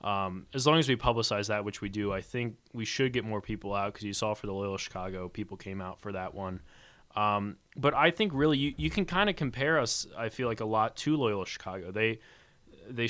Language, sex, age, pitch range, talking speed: English, male, 20-39, 100-120 Hz, 245 wpm